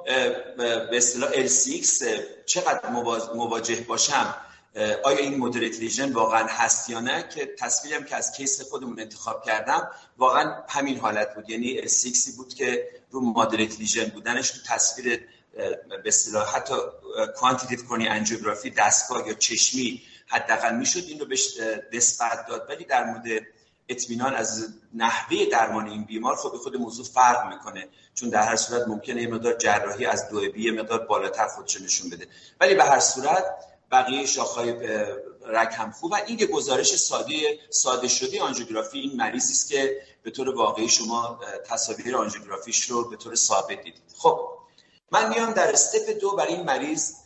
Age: 40-59